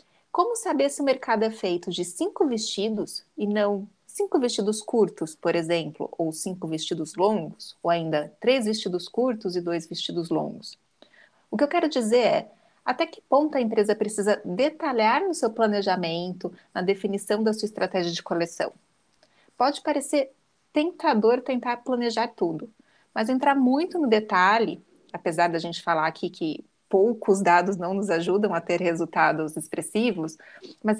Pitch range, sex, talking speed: 185-265 Hz, female, 155 wpm